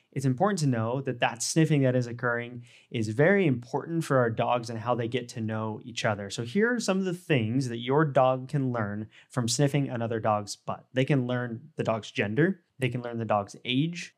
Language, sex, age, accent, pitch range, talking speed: English, male, 20-39, American, 115-150 Hz, 225 wpm